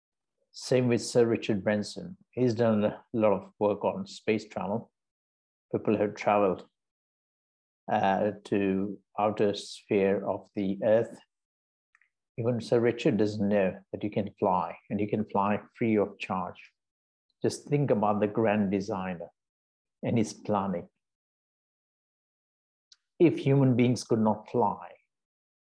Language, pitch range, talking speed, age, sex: English, 100-120 Hz, 130 wpm, 60-79, male